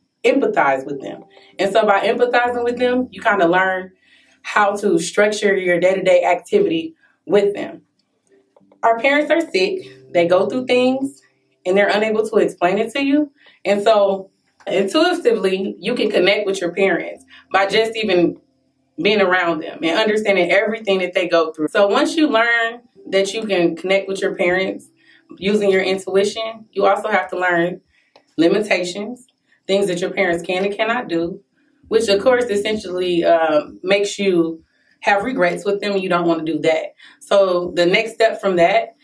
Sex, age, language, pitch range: female, 20-39, English, 175-220 Hz